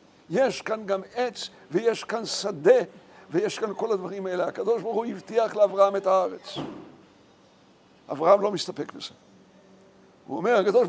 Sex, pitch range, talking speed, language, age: male, 220-285 Hz, 145 wpm, Hebrew, 60-79